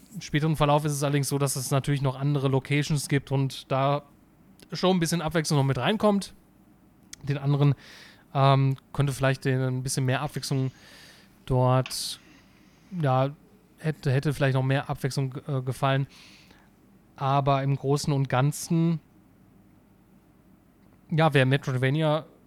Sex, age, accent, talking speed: male, 30-49, German, 135 wpm